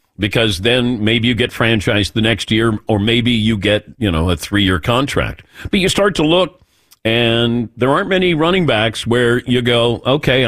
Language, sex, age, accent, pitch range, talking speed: English, male, 50-69, American, 105-145 Hz, 195 wpm